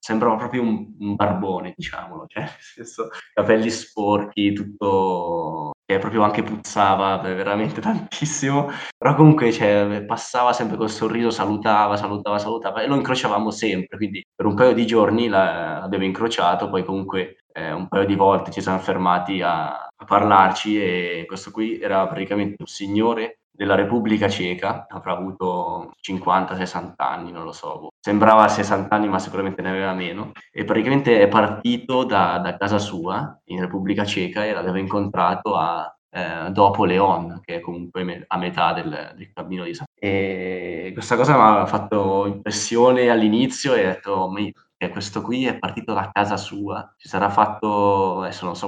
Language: Italian